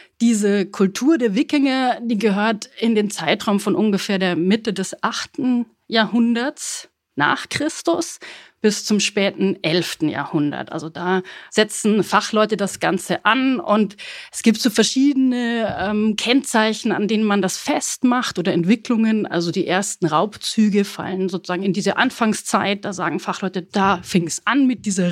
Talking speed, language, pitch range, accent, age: 150 wpm, German, 170-220 Hz, German, 30-49